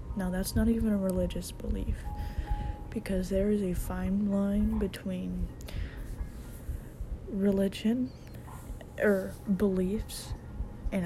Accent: American